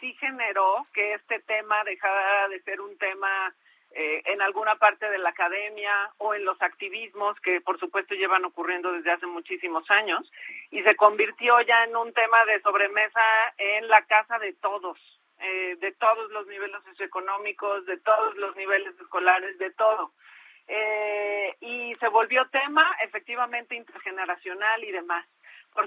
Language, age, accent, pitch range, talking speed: Spanish, 40-59, Mexican, 195-230 Hz, 155 wpm